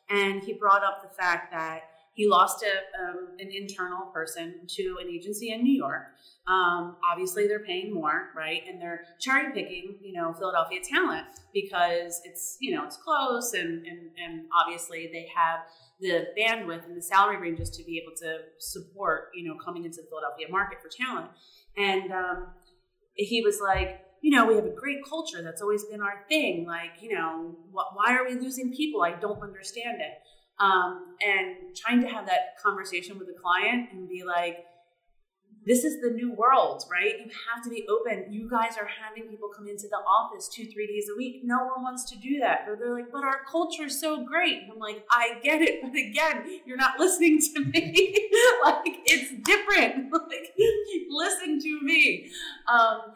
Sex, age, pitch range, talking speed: female, 30-49, 175-260 Hz, 190 wpm